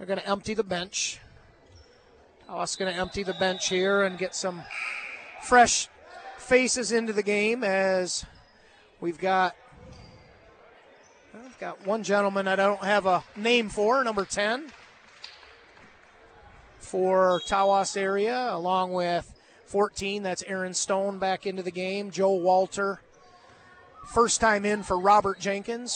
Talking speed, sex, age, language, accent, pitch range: 135 wpm, male, 30-49, English, American, 185-230 Hz